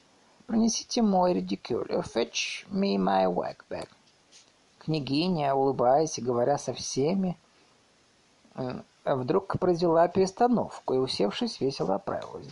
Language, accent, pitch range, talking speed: Russian, native, 125-185 Hz, 105 wpm